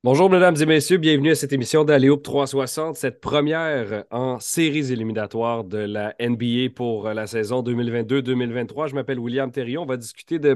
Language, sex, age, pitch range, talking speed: French, male, 30-49, 110-135 Hz, 170 wpm